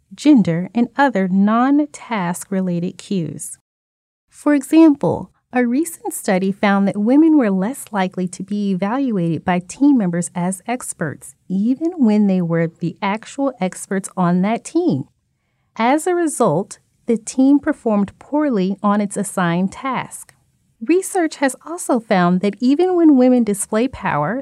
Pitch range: 185-255 Hz